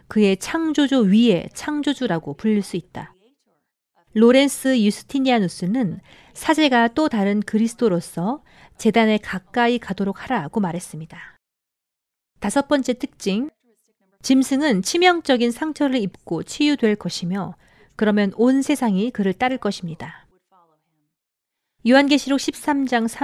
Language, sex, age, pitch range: Korean, female, 40-59, 195-260 Hz